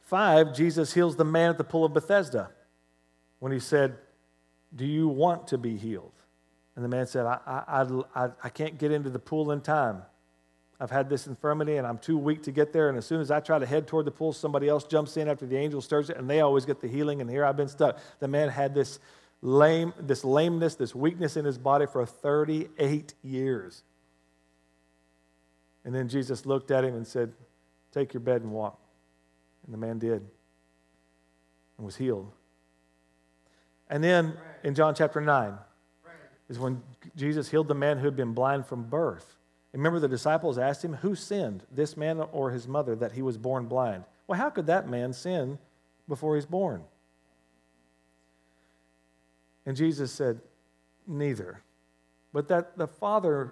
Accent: American